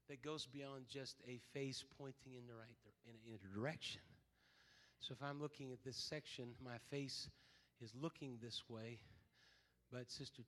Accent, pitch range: American, 135-200 Hz